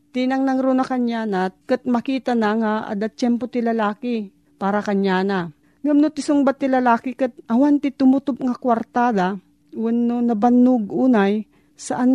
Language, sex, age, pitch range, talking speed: Filipino, female, 40-59, 185-235 Hz, 135 wpm